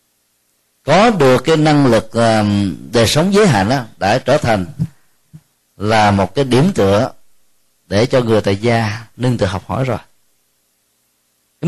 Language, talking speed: Vietnamese, 145 wpm